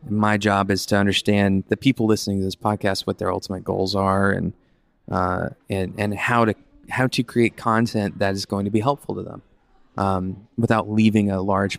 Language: English